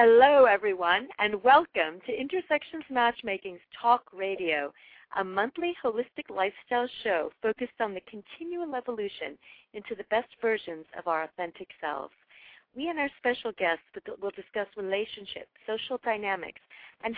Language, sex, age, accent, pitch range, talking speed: English, female, 40-59, American, 190-255 Hz, 135 wpm